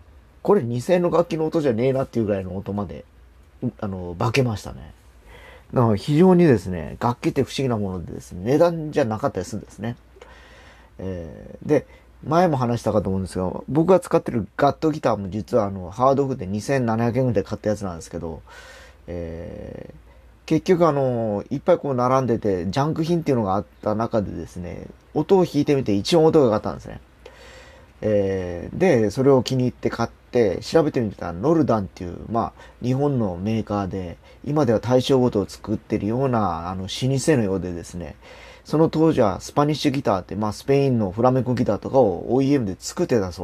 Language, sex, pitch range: Japanese, male, 95-135 Hz